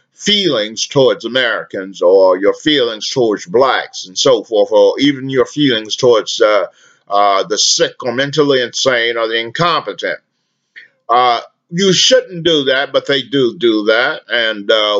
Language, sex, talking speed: English, male, 150 wpm